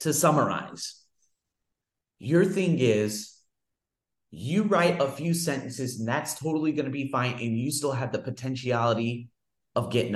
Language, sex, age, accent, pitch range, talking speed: English, male, 30-49, American, 130-185 Hz, 150 wpm